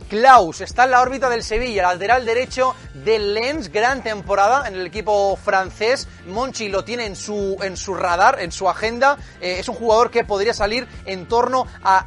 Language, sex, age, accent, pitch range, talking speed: Spanish, male, 30-49, Spanish, 190-245 Hz, 190 wpm